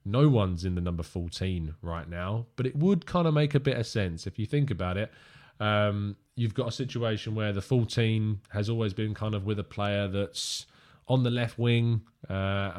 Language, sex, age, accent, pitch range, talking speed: English, male, 20-39, British, 95-120 Hz, 210 wpm